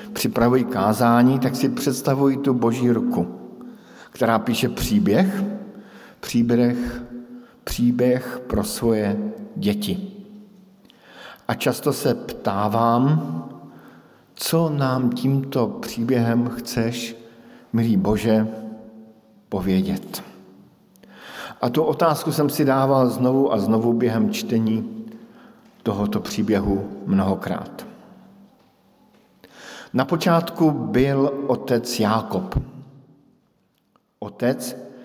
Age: 50-69